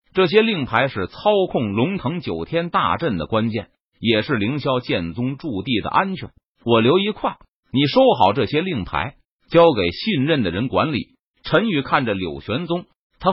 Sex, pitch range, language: male, 125-200 Hz, Chinese